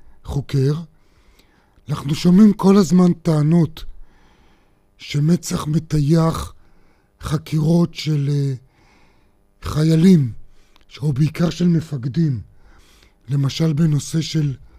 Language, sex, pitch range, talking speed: Hebrew, male, 110-165 Hz, 75 wpm